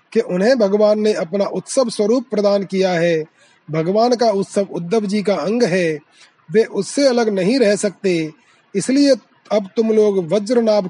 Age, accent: 30-49, native